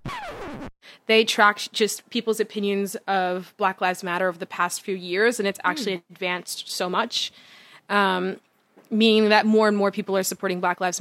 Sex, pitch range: female, 190-235 Hz